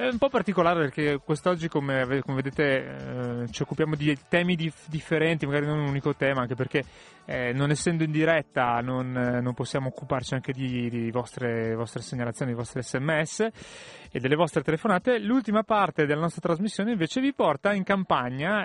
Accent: native